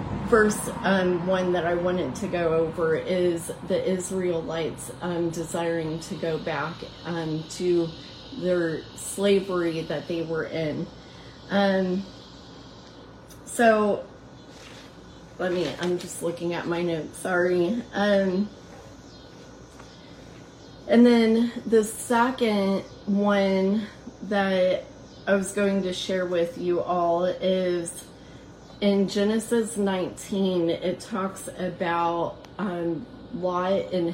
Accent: American